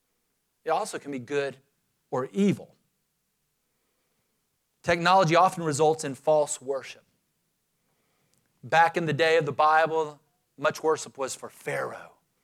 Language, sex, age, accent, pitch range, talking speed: English, male, 40-59, American, 140-175 Hz, 120 wpm